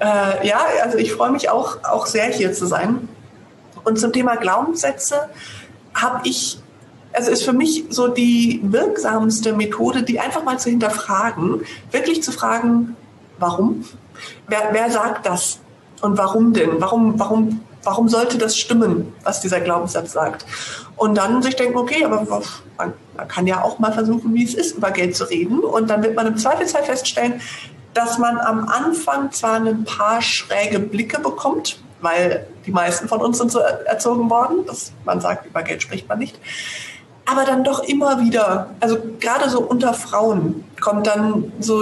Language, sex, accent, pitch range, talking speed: German, female, German, 200-240 Hz, 170 wpm